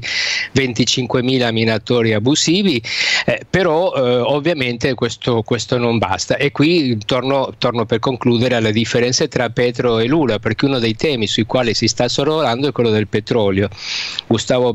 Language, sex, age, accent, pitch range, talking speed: Italian, male, 50-69, native, 115-135 Hz, 150 wpm